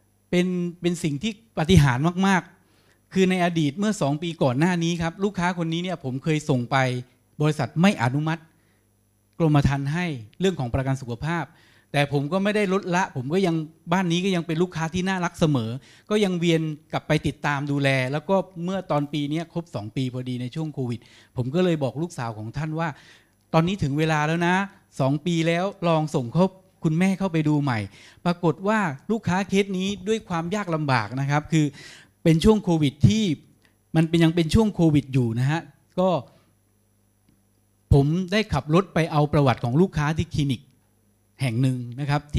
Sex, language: male, Thai